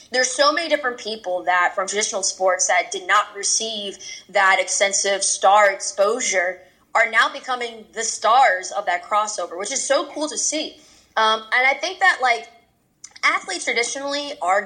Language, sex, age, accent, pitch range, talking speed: English, female, 20-39, American, 190-270 Hz, 165 wpm